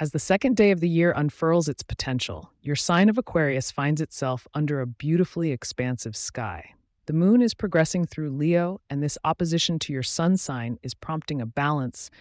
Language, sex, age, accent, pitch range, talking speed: English, female, 30-49, American, 115-160 Hz, 185 wpm